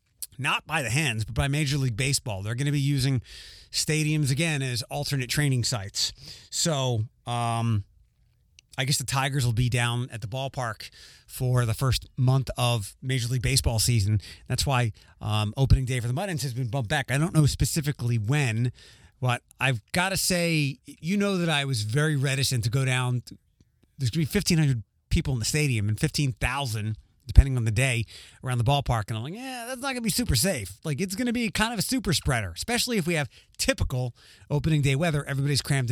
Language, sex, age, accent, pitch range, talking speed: English, male, 30-49, American, 120-155 Hz, 200 wpm